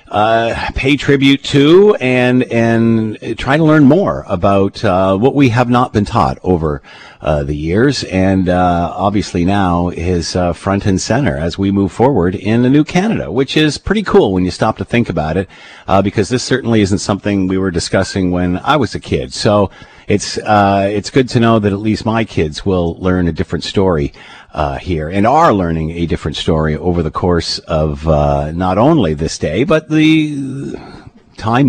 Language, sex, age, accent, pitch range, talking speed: English, male, 50-69, American, 85-105 Hz, 190 wpm